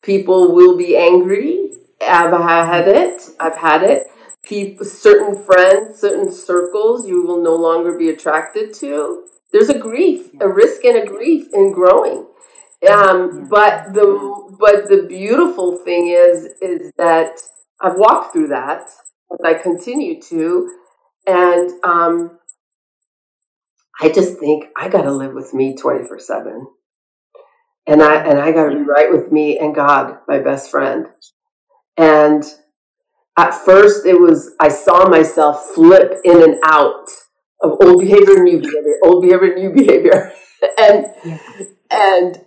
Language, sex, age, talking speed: English, female, 40-59, 145 wpm